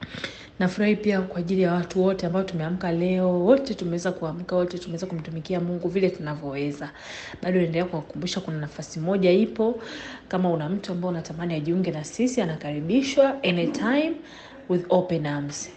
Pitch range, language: 165-215 Hz, English